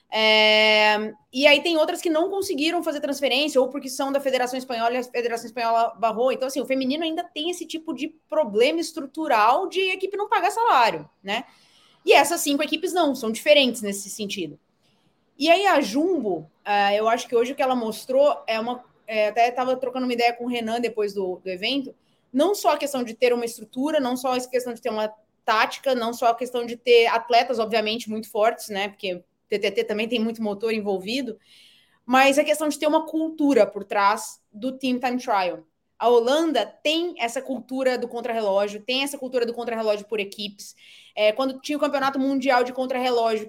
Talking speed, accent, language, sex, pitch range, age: 200 wpm, Brazilian, Portuguese, female, 225-285 Hz, 20-39